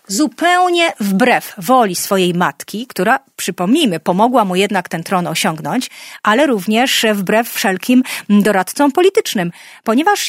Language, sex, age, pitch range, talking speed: Polish, female, 40-59, 210-300 Hz, 115 wpm